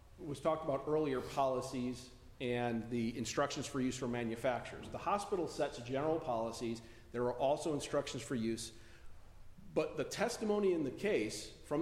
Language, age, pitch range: English, 40-59, 120-155 Hz